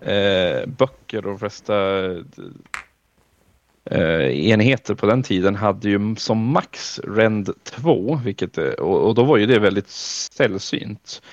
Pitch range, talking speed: 95-110 Hz, 140 wpm